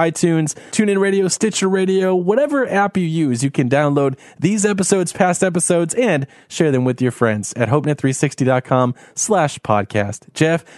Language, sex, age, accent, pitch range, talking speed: English, male, 20-39, American, 145-185 Hz, 150 wpm